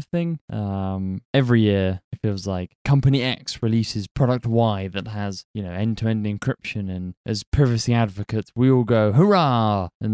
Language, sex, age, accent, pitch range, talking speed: English, male, 20-39, British, 100-120 Hz, 160 wpm